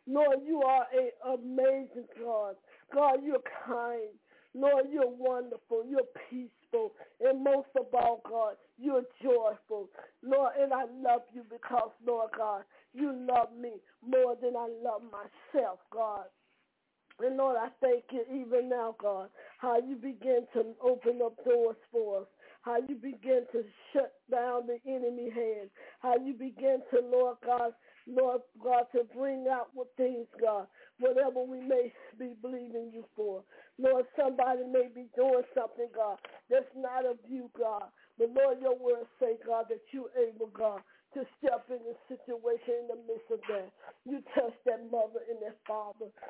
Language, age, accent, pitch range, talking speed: English, 50-69, American, 230-265 Hz, 160 wpm